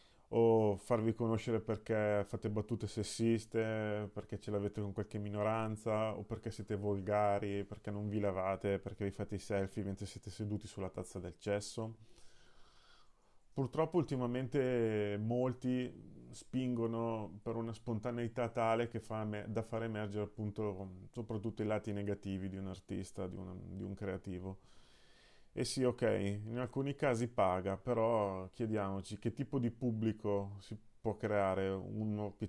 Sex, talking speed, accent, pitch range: male, 145 wpm, native, 100-115 Hz